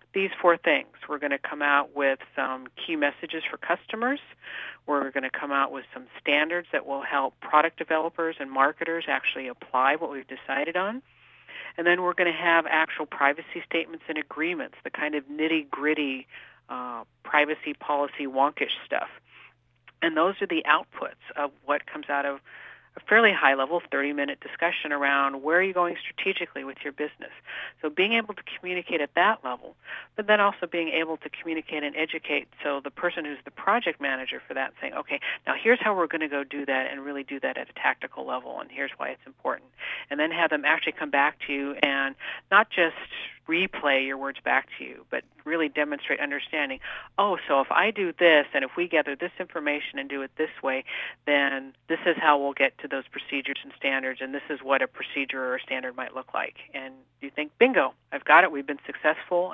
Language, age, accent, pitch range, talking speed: English, 50-69, American, 140-170 Hz, 200 wpm